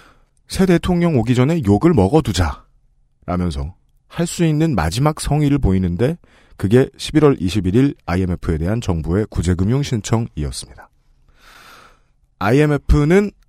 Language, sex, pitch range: Korean, male, 90-140 Hz